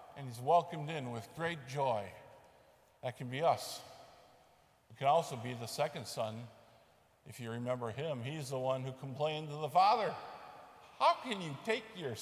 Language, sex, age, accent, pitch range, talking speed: English, male, 50-69, American, 120-155 Hz, 170 wpm